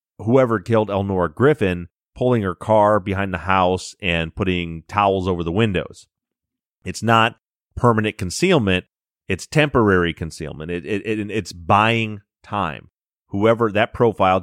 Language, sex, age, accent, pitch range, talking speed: English, male, 30-49, American, 90-115 Hz, 120 wpm